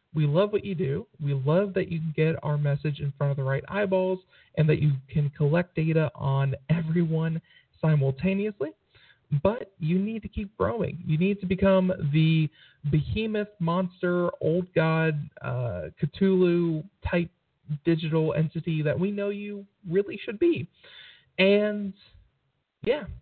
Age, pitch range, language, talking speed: 40-59, 150-190 Hz, English, 145 wpm